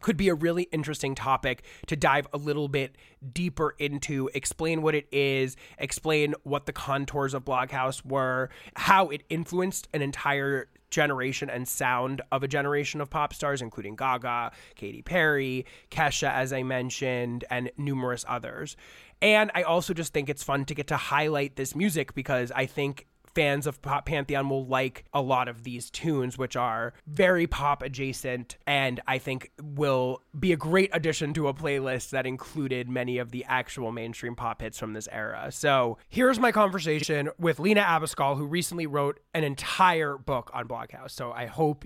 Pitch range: 130-160 Hz